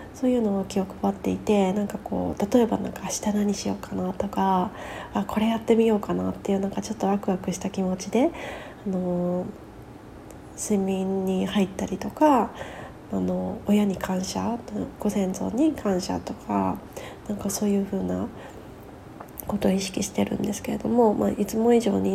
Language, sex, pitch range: Japanese, female, 185-230 Hz